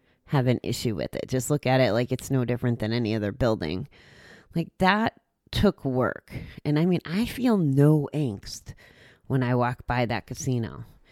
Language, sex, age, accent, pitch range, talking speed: English, female, 30-49, American, 125-160 Hz, 185 wpm